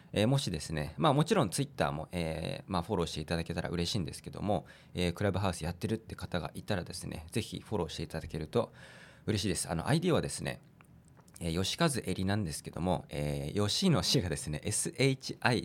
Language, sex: Japanese, male